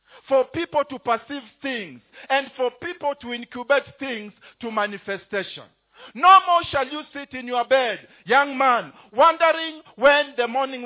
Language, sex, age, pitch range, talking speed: English, male, 50-69, 235-290 Hz, 150 wpm